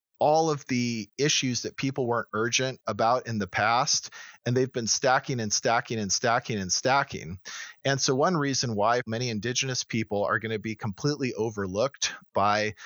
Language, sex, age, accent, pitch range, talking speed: English, male, 40-59, American, 105-135 Hz, 175 wpm